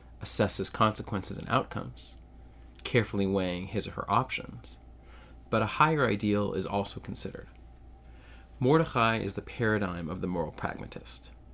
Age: 30-49